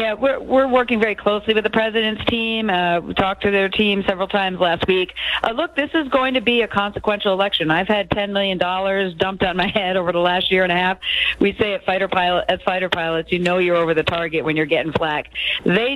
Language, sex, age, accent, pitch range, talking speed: English, female, 40-59, American, 180-215 Hz, 240 wpm